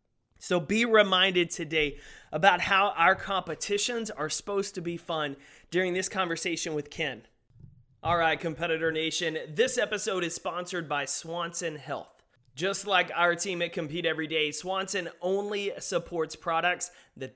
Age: 30-49